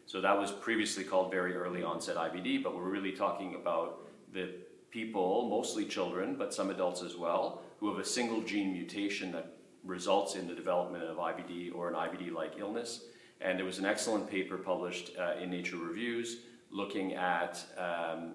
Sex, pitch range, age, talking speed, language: male, 90-105 Hz, 40-59, 175 wpm, English